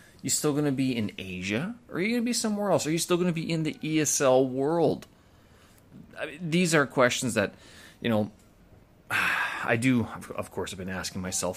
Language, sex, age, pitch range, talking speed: English, male, 30-49, 105-140 Hz, 215 wpm